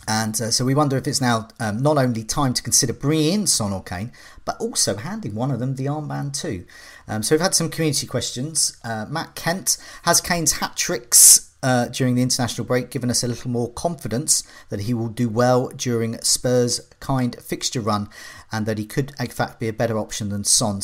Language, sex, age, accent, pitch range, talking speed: English, male, 40-59, British, 105-140 Hz, 210 wpm